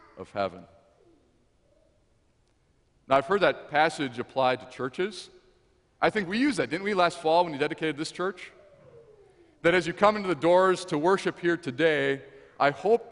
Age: 40-59